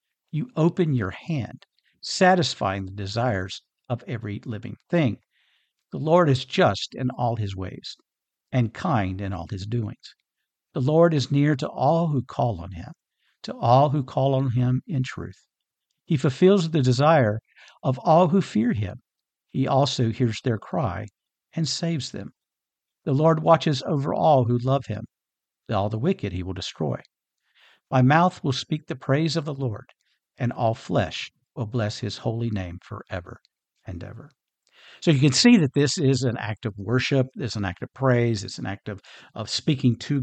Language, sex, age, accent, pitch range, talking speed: English, male, 60-79, American, 110-145 Hz, 175 wpm